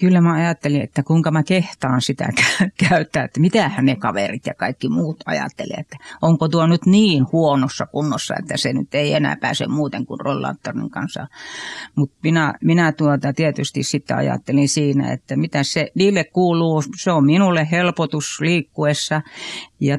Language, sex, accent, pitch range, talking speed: Finnish, female, native, 150-205 Hz, 160 wpm